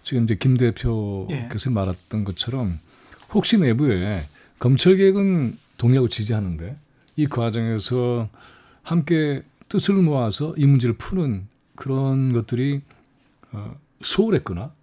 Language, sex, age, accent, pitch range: Korean, male, 40-59, native, 105-140 Hz